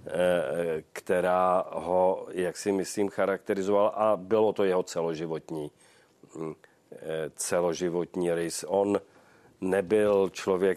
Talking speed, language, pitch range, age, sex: 90 wpm, Czech, 85-90 Hz, 40-59, male